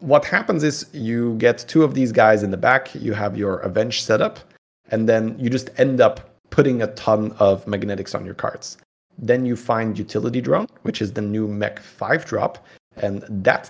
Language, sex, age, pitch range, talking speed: English, male, 30-49, 105-130 Hz, 195 wpm